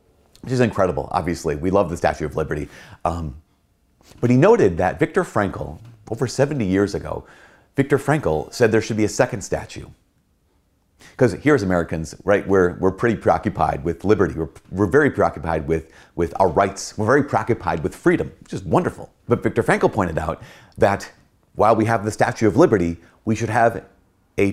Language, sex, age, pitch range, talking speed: English, male, 30-49, 90-120 Hz, 180 wpm